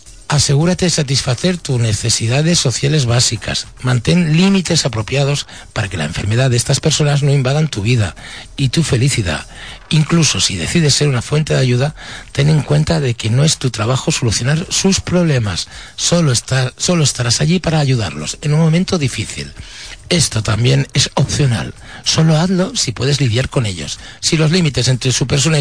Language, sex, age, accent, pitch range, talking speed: Spanish, male, 60-79, Spanish, 115-150 Hz, 165 wpm